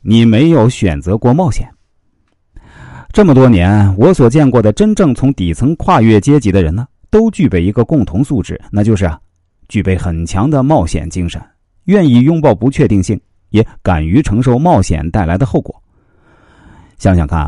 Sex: male